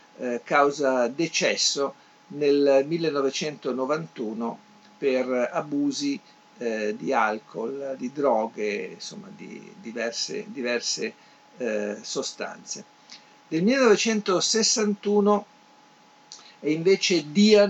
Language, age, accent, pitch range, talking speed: Italian, 50-69, native, 135-175 Hz, 65 wpm